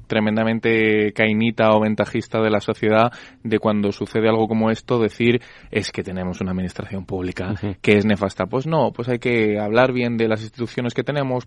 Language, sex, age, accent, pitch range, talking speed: Spanish, male, 20-39, Spanish, 110-130 Hz, 185 wpm